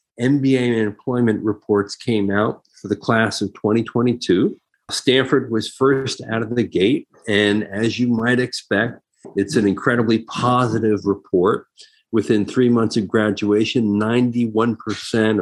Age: 50-69